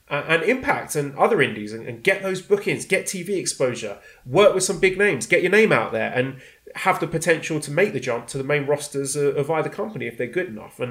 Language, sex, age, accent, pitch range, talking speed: English, male, 30-49, British, 125-155 Hz, 225 wpm